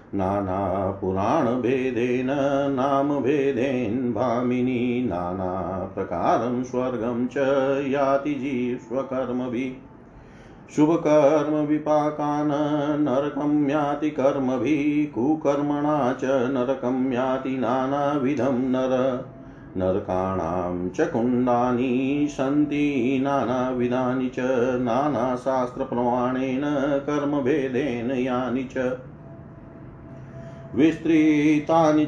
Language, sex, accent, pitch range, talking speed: Hindi, male, native, 125-145 Hz, 65 wpm